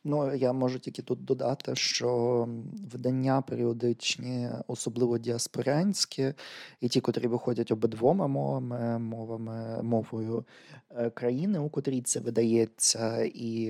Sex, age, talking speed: male, 20-39, 110 wpm